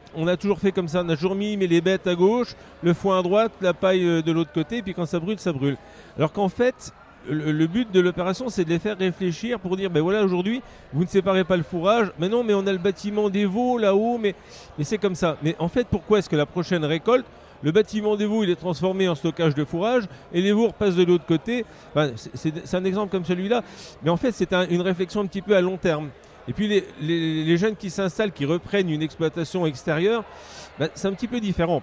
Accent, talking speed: French, 260 wpm